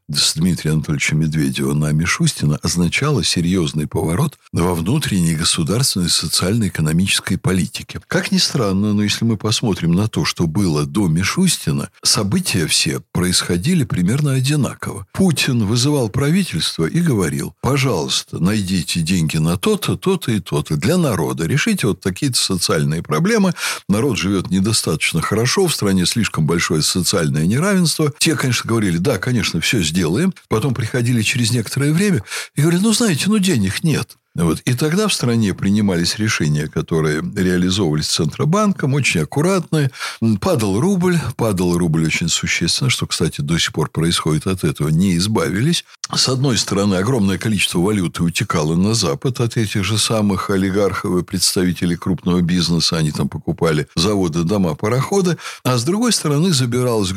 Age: 60-79